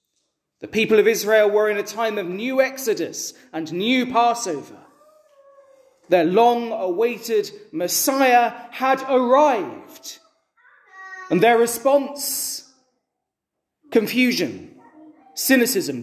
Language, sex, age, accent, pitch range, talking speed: English, male, 30-49, British, 220-285 Hz, 90 wpm